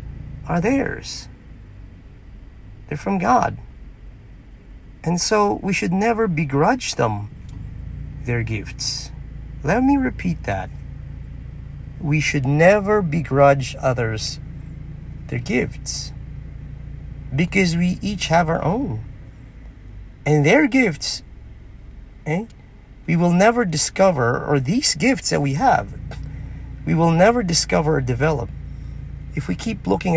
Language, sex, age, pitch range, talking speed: English, male, 40-59, 120-150 Hz, 110 wpm